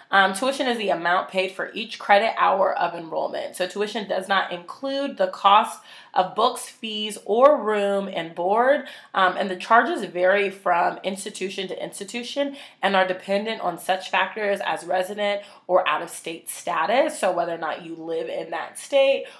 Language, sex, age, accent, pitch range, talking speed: English, female, 20-39, American, 165-220 Hz, 170 wpm